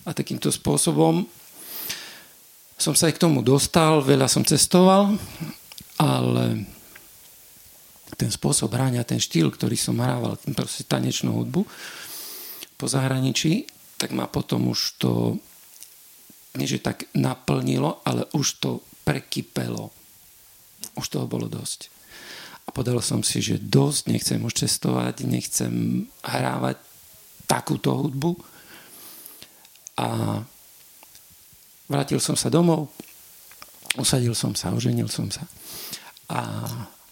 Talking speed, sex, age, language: 110 wpm, male, 50-69, Slovak